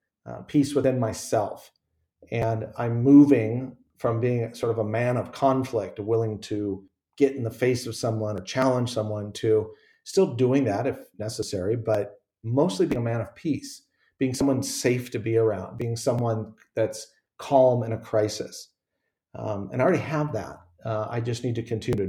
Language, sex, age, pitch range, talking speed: English, male, 40-59, 110-130 Hz, 175 wpm